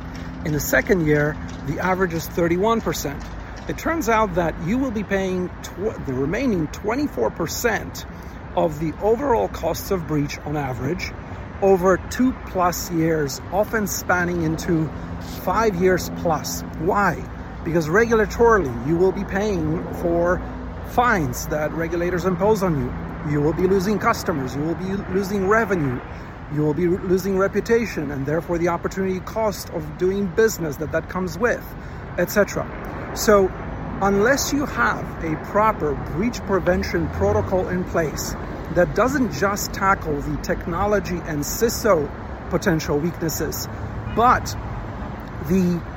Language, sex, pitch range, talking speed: English, male, 150-200 Hz, 135 wpm